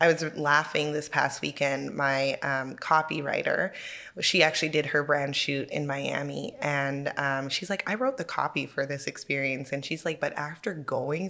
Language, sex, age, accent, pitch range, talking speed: English, female, 20-39, American, 140-170 Hz, 180 wpm